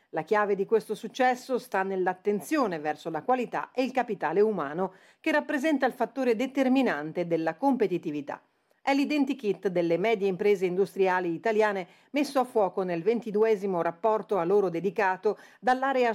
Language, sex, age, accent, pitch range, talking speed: Italian, female, 40-59, native, 185-245 Hz, 140 wpm